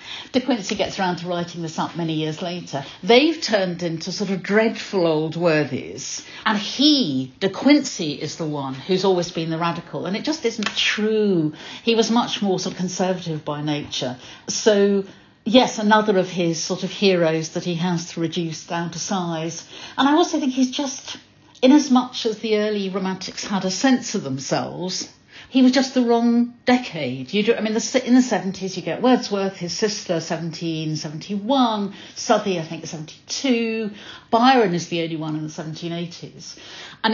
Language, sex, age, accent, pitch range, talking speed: English, female, 60-79, British, 165-230 Hz, 180 wpm